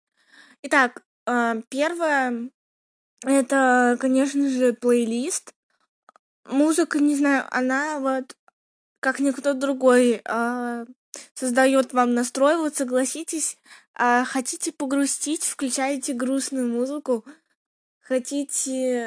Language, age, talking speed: Russian, 20-39, 80 wpm